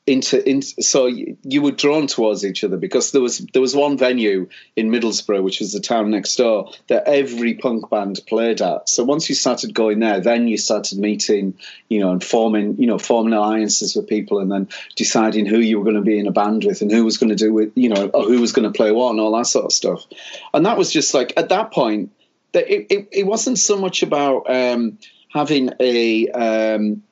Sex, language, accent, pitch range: male, English, British, 110-145 Hz